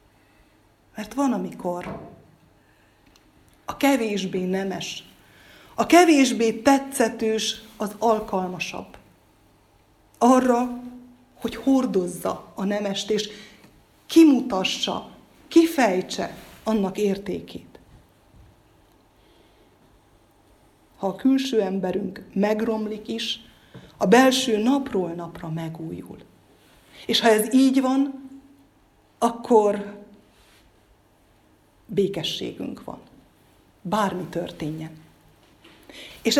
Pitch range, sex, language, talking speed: 185-255 Hz, female, Hungarian, 70 wpm